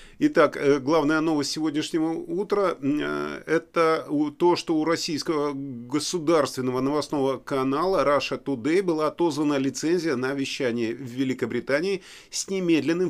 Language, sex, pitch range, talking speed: Russian, male, 130-165 Hz, 115 wpm